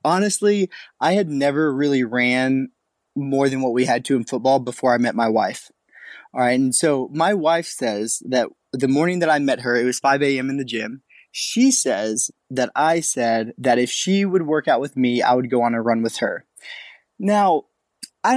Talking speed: 205 wpm